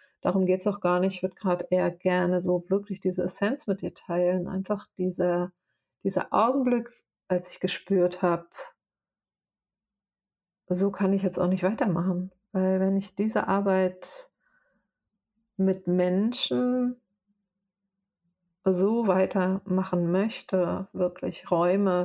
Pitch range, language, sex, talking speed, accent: 180-200 Hz, German, female, 120 wpm, German